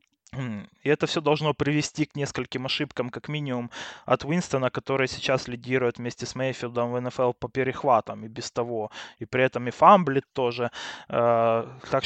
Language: Russian